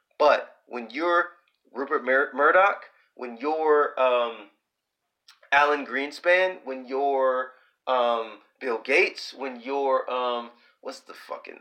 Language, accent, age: English, American, 30-49